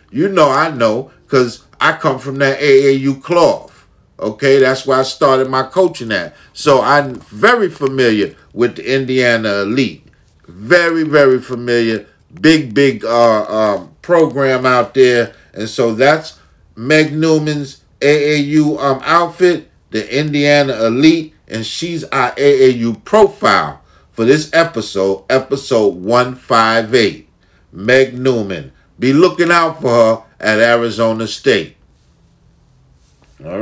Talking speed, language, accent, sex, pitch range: 125 wpm, English, American, male, 110-150 Hz